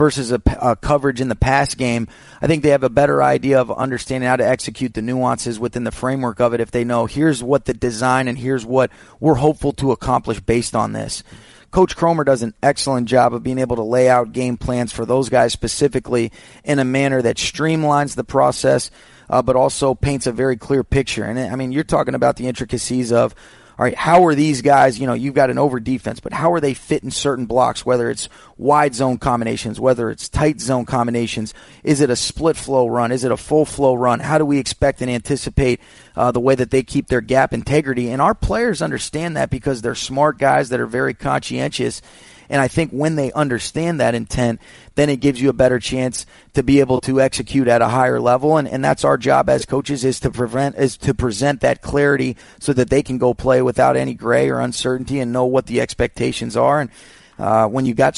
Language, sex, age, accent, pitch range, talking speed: English, male, 30-49, American, 120-140 Hz, 220 wpm